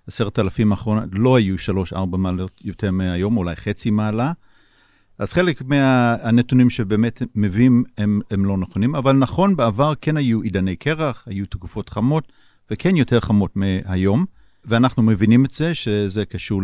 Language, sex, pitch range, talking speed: Hebrew, male, 100-125 Hz, 150 wpm